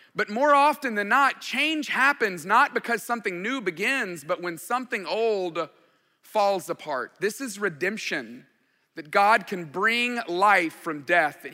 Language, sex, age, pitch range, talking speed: English, male, 30-49, 180-270 Hz, 150 wpm